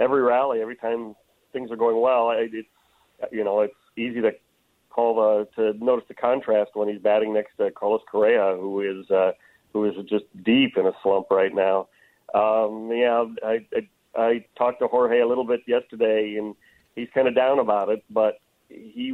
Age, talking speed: 40-59, 190 wpm